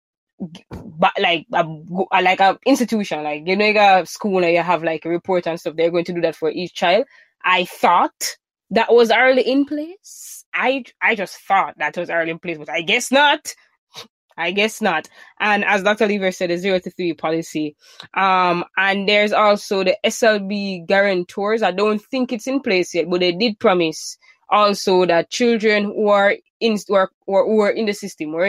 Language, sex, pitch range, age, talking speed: English, female, 170-215 Hz, 20-39, 195 wpm